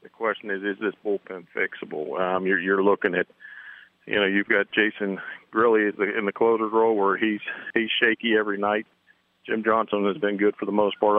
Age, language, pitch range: 40-59, English, 100-120 Hz